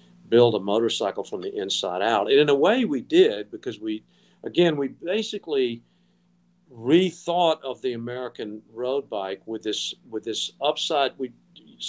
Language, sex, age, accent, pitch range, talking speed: English, male, 50-69, American, 120-185 Hz, 150 wpm